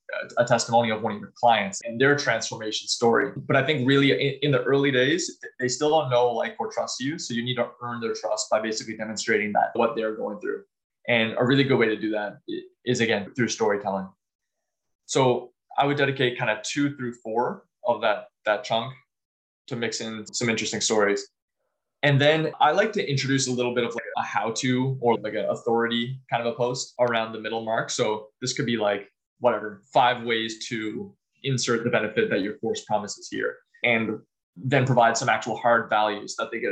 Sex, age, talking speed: male, 20-39, 210 wpm